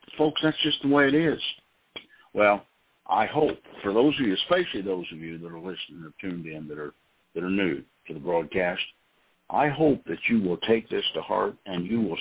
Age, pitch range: 60-79, 80-115 Hz